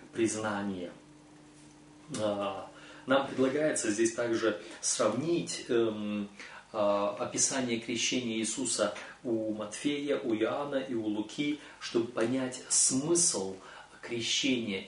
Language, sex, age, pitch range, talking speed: Russian, male, 30-49, 110-140 Hz, 80 wpm